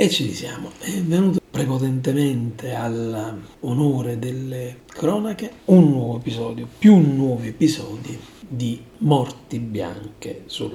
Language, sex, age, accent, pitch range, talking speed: Italian, male, 40-59, native, 115-145 Hz, 105 wpm